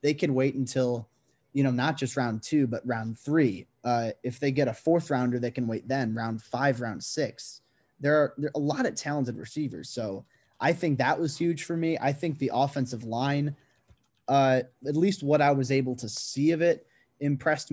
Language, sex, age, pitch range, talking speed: English, male, 20-39, 120-145 Hz, 210 wpm